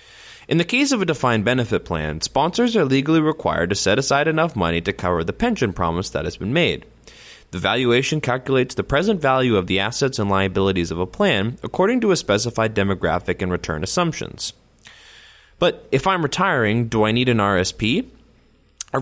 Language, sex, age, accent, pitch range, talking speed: English, male, 20-39, American, 95-140 Hz, 185 wpm